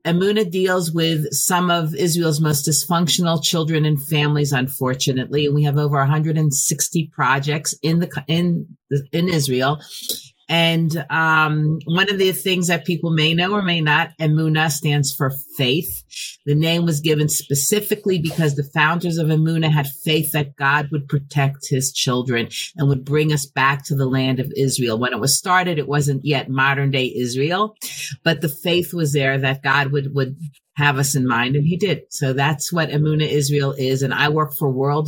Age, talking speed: 40-59, 185 wpm